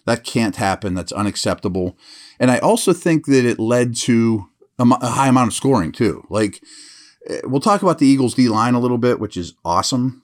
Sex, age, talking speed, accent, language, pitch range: male, 40-59, 195 wpm, American, English, 105-140 Hz